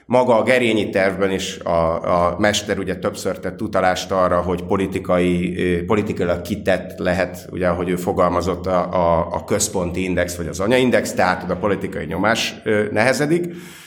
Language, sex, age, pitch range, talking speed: Hungarian, male, 30-49, 90-105 Hz, 150 wpm